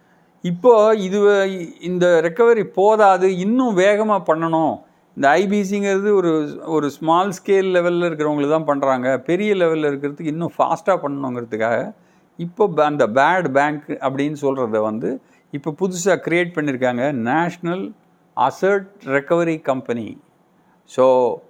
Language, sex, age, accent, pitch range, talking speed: Tamil, male, 50-69, native, 140-180 Hz, 110 wpm